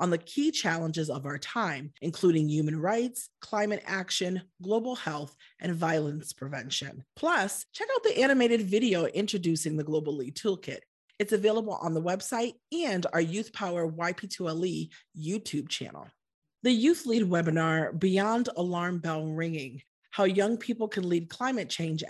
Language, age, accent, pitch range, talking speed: English, 40-59, American, 155-215 Hz, 150 wpm